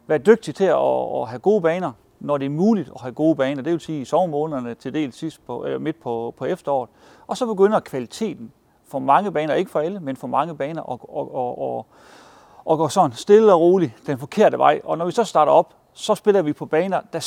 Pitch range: 135-175 Hz